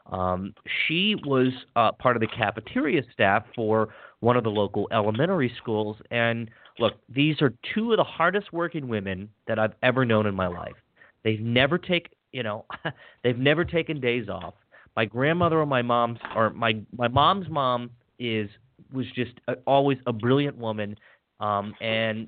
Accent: American